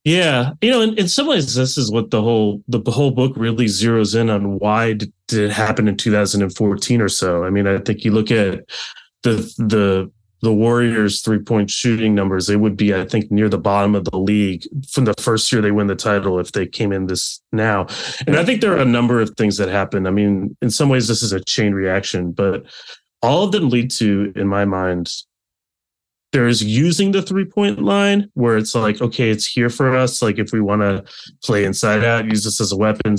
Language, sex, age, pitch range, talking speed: English, male, 30-49, 100-125 Hz, 220 wpm